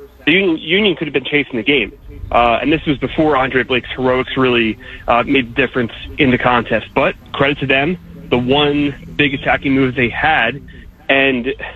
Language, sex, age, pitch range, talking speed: English, male, 30-49, 125-145 Hz, 185 wpm